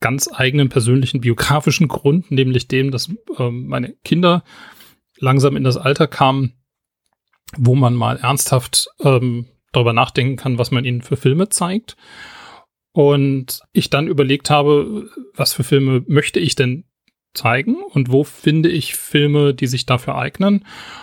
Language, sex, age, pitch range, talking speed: English, male, 30-49, 130-160 Hz, 145 wpm